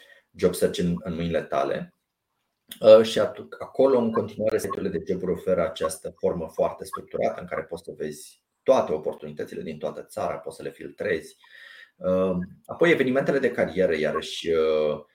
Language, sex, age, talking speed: Romanian, male, 30-49, 145 wpm